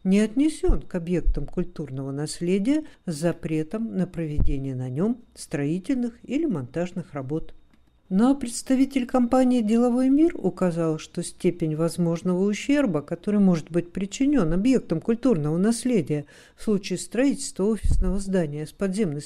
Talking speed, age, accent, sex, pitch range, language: 125 wpm, 60-79, native, female, 170-230 Hz, Russian